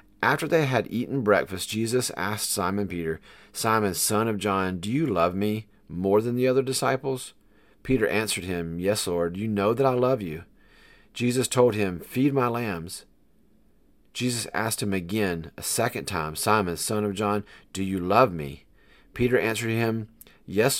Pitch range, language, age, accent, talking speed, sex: 95-120 Hz, English, 40-59, American, 165 wpm, male